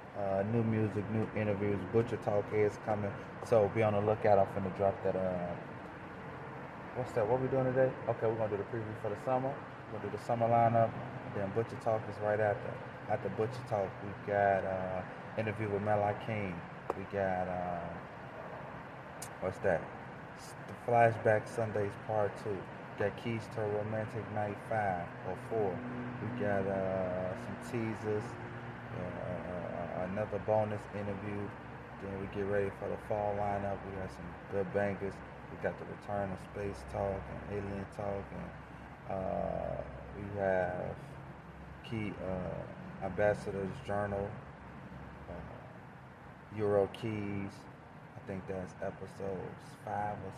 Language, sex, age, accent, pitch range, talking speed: English, male, 20-39, American, 95-110 Hz, 150 wpm